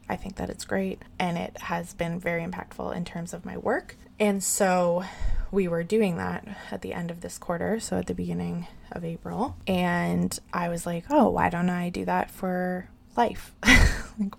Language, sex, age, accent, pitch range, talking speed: English, female, 20-39, American, 170-200 Hz, 195 wpm